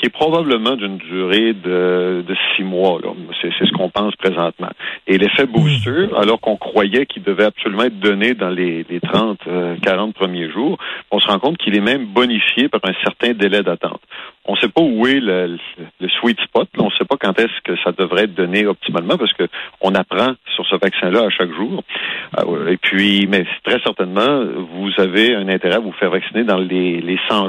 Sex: male